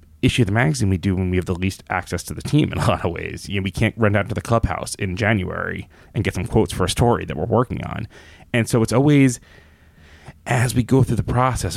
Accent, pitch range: American, 85-110 Hz